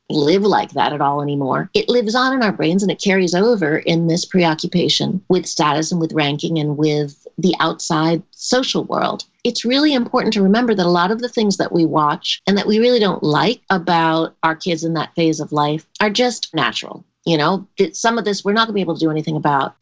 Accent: American